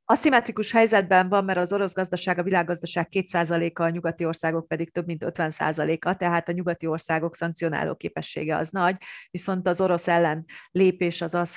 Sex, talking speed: female, 165 wpm